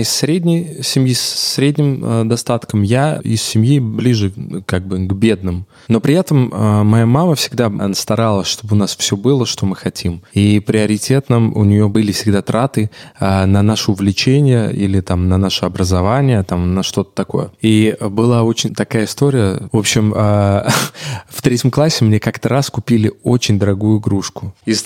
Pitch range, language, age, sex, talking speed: 100-125 Hz, Russian, 20-39, male, 170 wpm